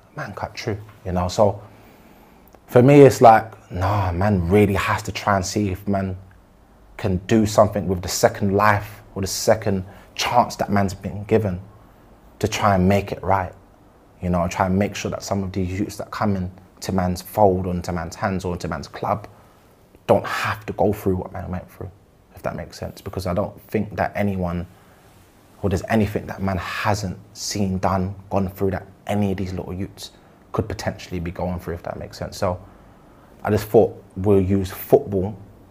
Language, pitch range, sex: English, 95-105 Hz, male